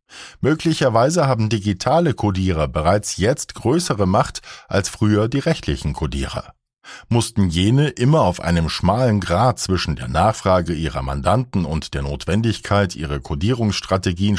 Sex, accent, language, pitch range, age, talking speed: male, German, German, 85-125 Hz, 50-69, 125 wpm